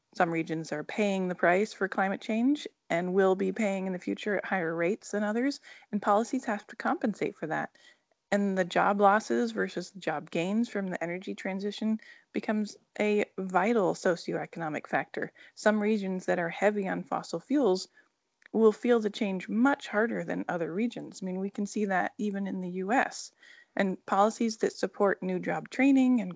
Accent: American